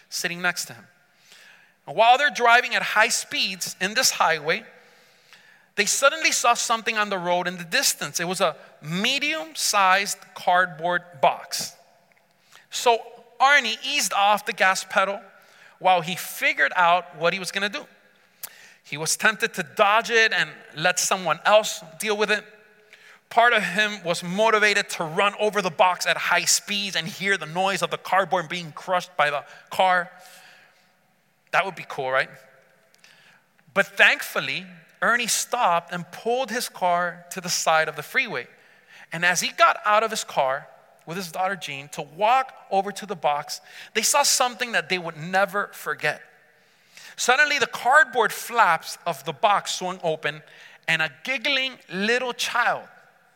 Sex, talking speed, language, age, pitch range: male, 160 wpm, English, 40-59, 175-225 Hz